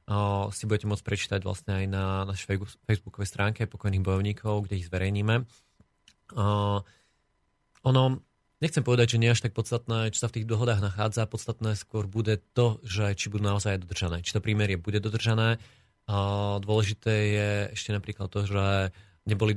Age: 30-49